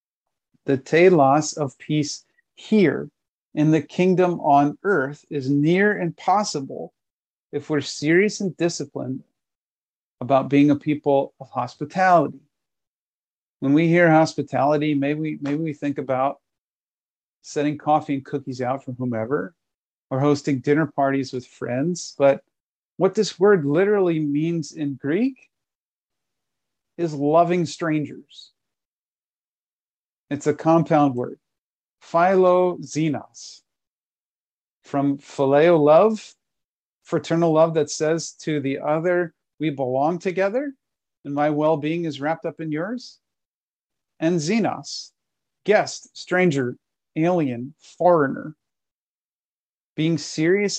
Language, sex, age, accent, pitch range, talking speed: English, male, 40-59, American, 140-170 Hz, 110 wpm